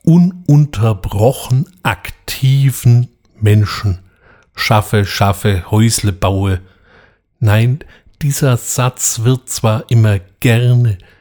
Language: German